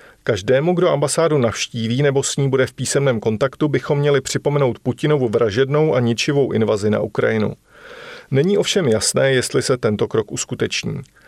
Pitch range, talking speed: 115-145 Hz, 155 wpm